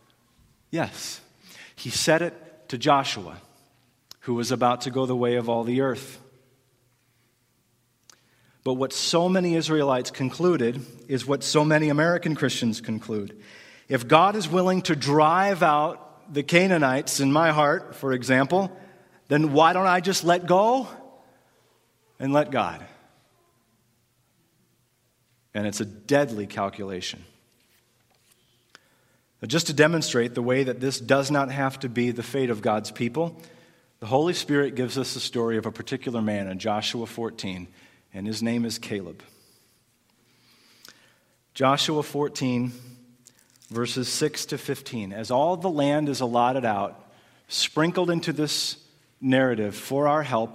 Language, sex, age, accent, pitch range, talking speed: English, male, 40-59, American, 115-145 Hz, 135 wpm